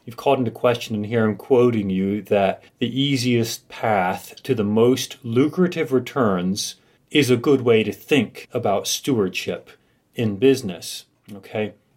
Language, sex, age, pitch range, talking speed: English, male, 30-49, 105-130 Hz, 145 wpm